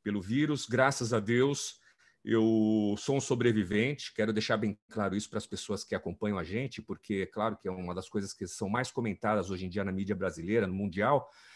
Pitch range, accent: 105-135 Hz, Brazilian